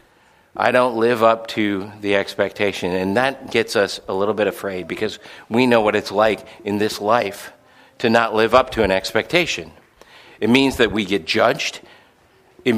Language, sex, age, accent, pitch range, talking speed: English, male, 50-69, American, 110-135 Hz, 180 wpm